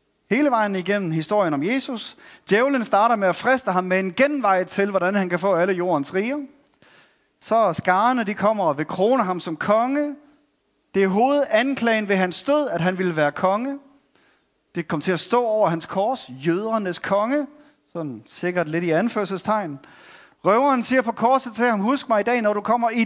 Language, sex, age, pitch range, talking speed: Danish, male, 30-49, 190-250 Hz, 190 wpm